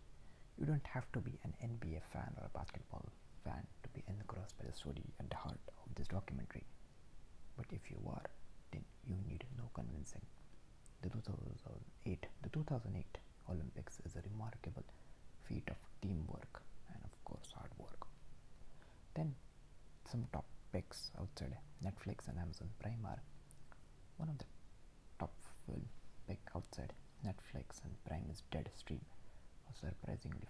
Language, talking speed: English, 140 wpm